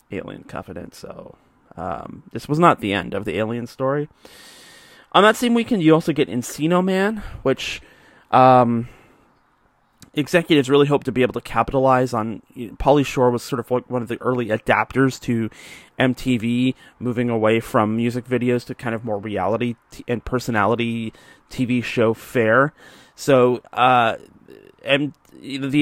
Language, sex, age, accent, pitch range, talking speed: English, male, 30-49, American, 115-140 Hz, 155 wpm